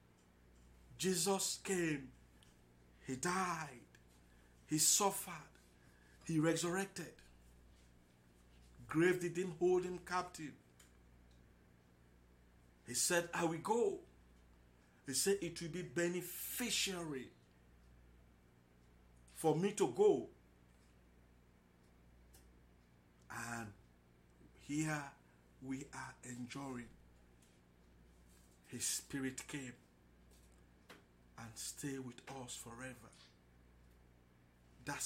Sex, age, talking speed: male, 60-79, 70 wpm